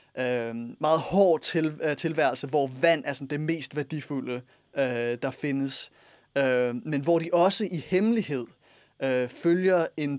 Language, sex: Danish, male